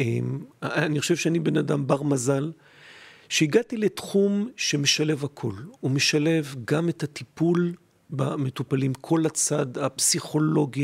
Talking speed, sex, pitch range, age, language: 110 wpm, male, 140-170 Hz, 40-59, Hebrew